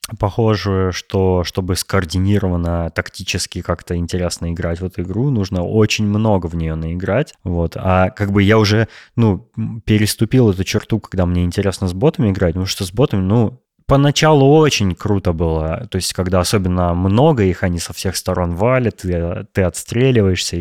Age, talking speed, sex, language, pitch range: 20-39, 155 wpm, male, Russian, 90-115 Hz